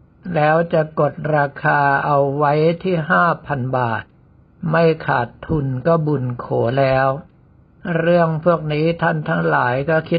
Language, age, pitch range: Thai, 60-79, 135-165 Hz